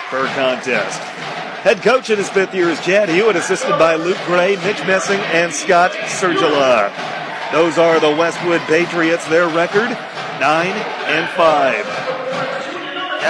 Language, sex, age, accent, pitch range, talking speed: English, male, 40-59, American, 150-190 Hz, 135 wpm